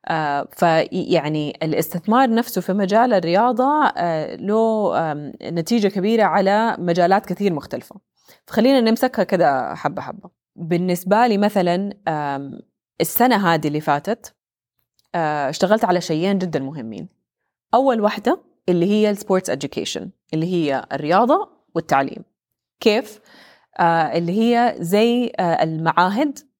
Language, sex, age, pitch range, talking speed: Arabic, female, 20-39, 160-220 Hz, 115 wpm